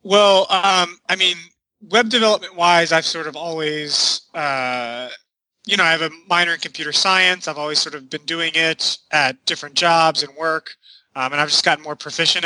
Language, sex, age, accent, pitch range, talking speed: English, male, 30-49, American, 150-185 Hz, 195 wpm